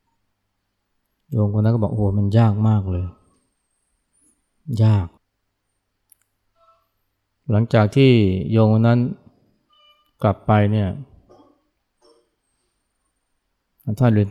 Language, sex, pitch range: Thai, male, 95-110 Hz